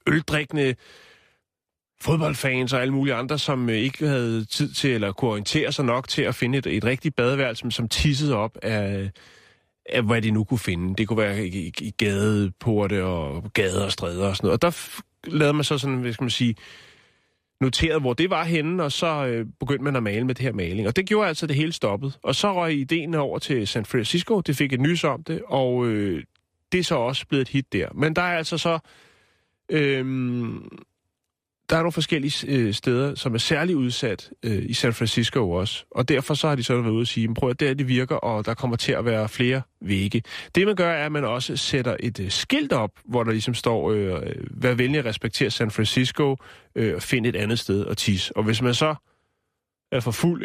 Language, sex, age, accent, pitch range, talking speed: Danish, male, 30-49, native, 110-145 Hz, 220 wpm